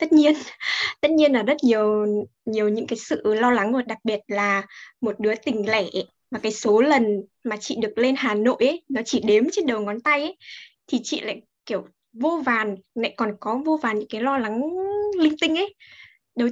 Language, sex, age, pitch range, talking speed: Vietnamese, female, 10-29, 220-295 Hz, 215 wpm